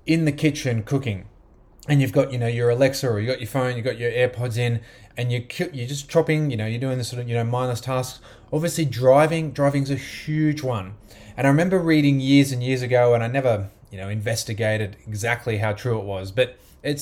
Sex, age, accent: male, 20-39, Australian